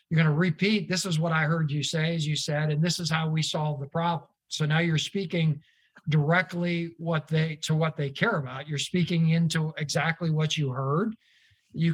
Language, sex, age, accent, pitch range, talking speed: English, male, 50-69, American, 155-180 Hz, 210 wpm